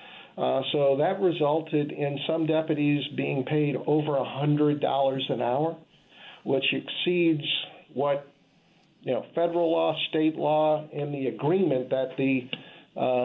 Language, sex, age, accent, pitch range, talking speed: English, male, 50-69, American, 130-155 Hz, 125 wpm